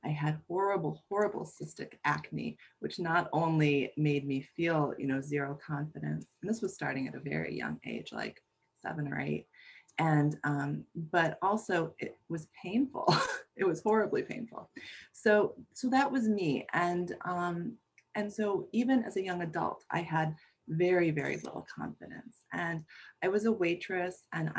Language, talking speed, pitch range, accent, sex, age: English, 160 wpm, 145-180 Hz, American, female, 30-49